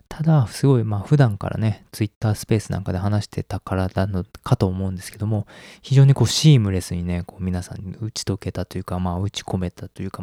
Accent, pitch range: native, 100-130 Hz